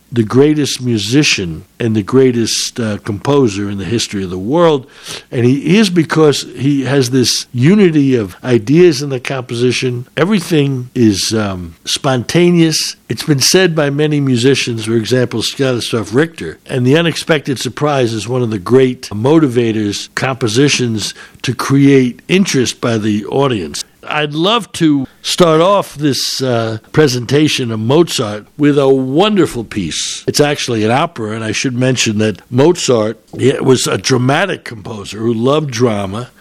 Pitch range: 115-145 Hz